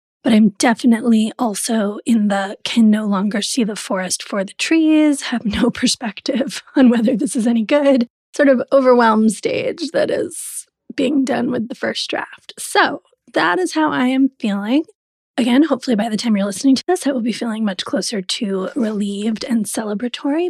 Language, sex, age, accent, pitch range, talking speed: English, female, 30-49, American, 220-275 Hz, 180 wpm